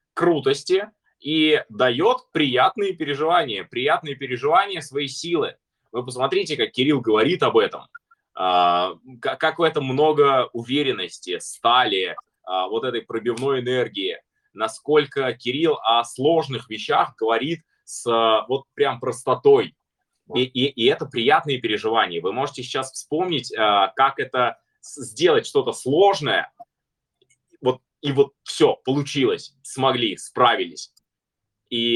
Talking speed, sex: 105 wpm, male